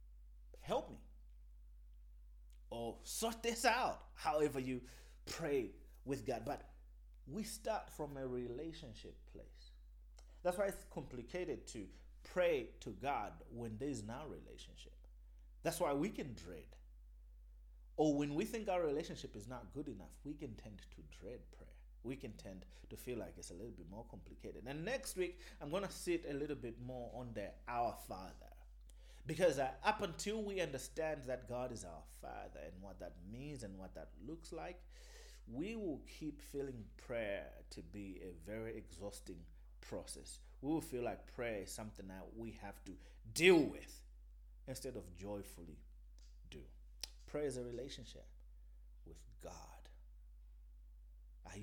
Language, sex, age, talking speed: English, male, 30-49, 155 wpm